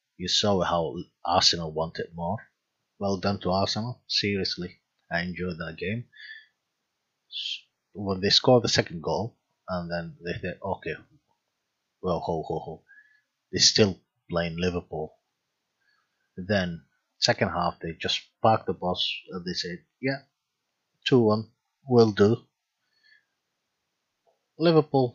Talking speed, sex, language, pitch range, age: 120 wpm, male, English, 90-120 Hz, 30-49